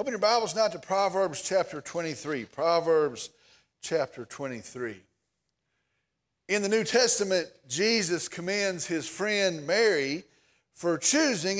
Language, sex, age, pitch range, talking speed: English, male, 40-59, 175-235 Hz, 115 wpm